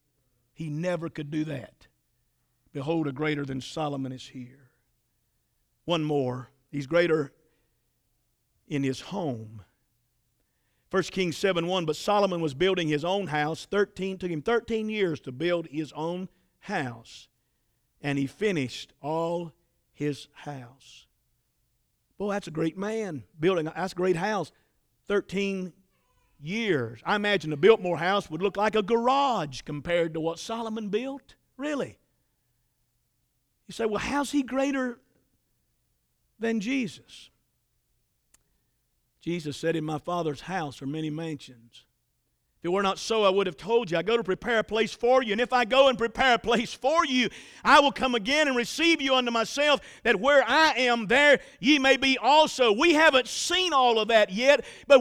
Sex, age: male, 50-69